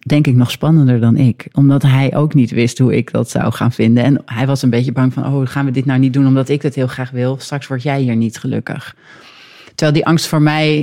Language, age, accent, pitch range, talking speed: Dutch, 40-59, Dutch, 130-155 Hz, 265 wpm